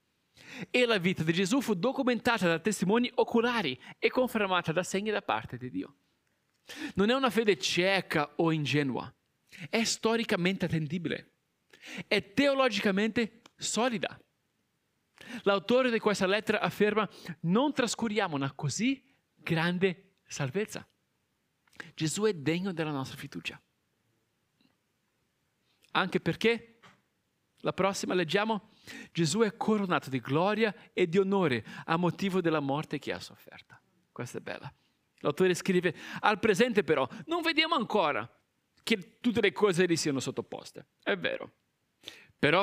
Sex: male